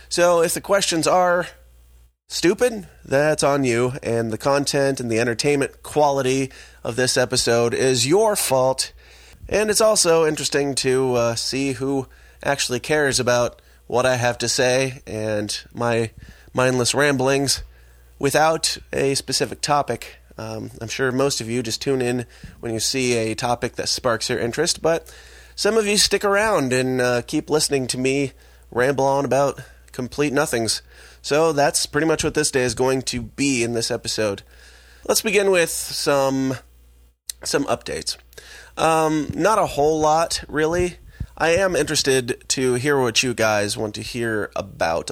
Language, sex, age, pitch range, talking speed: English, male, 30-49, 115-145 Hz, 160 wpm